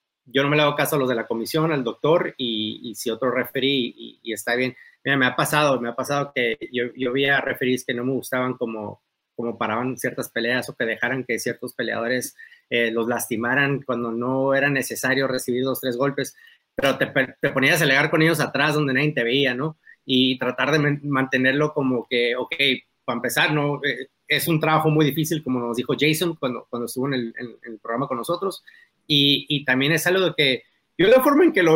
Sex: male